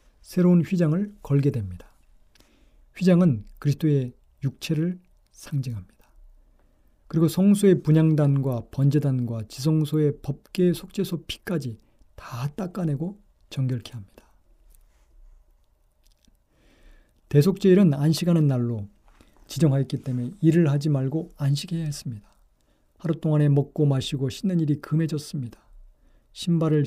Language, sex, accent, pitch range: Korean, male, native, 130-170 Hz